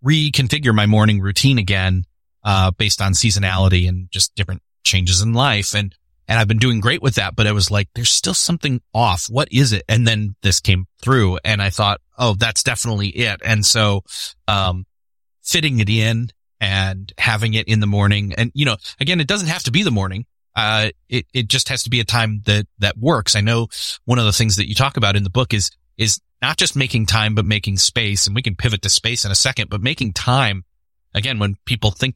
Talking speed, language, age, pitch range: 220 wpm, English, 30-49, 100-125 Hz